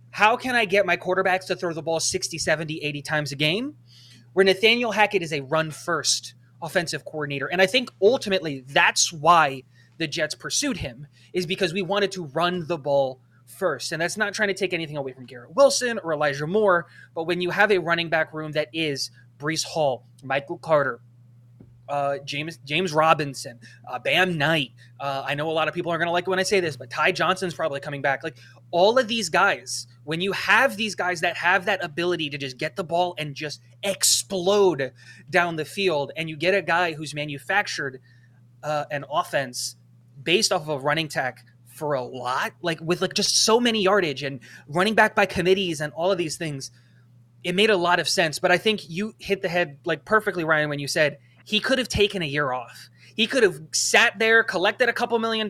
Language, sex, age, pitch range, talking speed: English, male, 20-39, 140-190 Hz, 215 wpm